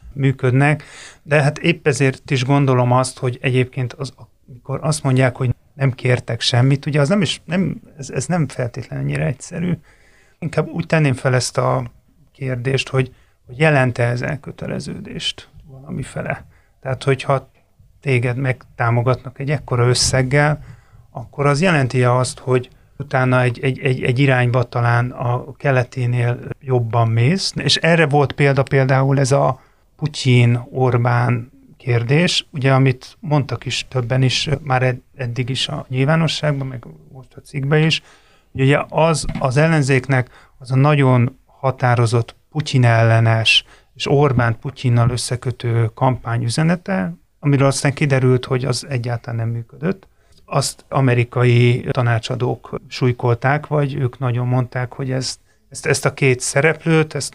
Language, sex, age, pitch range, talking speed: Hungarian, male, 30-49, 125-145 Hz, 135 wpm